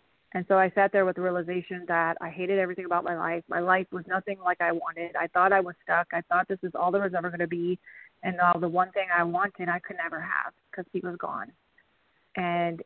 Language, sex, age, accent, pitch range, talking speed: English, female, 30-49, American, 180-200 Hz, 255 wpm